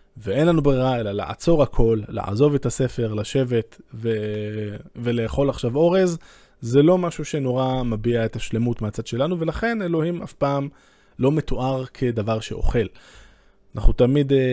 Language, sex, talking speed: Hebrew, male, 135 wpm